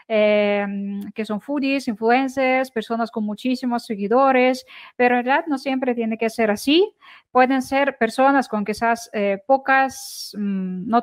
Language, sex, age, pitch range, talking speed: Spanish, female, 10-29, 210-270 Hz, 145 wpm